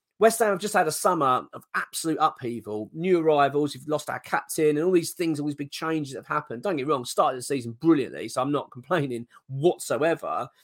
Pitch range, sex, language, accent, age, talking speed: 135-175 Hz, male, English, British, 30-49, 225 wpm